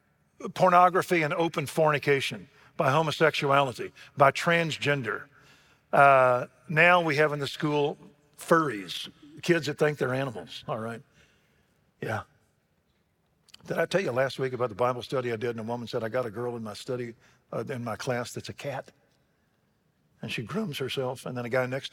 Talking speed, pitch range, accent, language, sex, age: 170 wpm, 125-155 Hz, American, English, male, 50-69